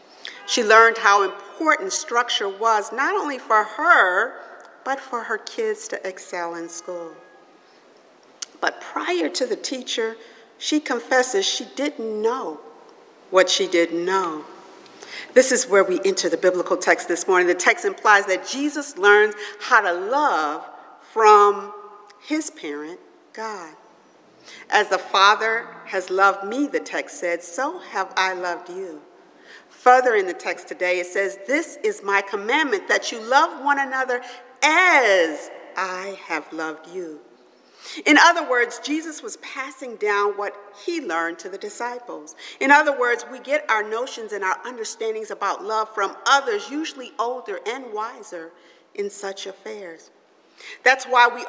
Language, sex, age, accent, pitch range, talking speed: English, female, 50-69, American, 195-285 Hz, 150 wpm